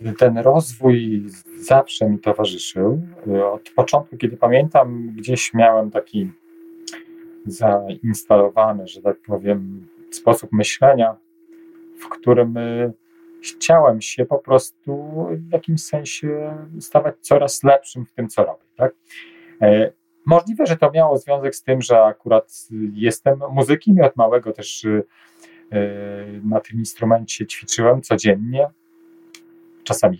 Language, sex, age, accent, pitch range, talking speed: Polish, male, 40-59, native, 115-170 Hz, 110 wpm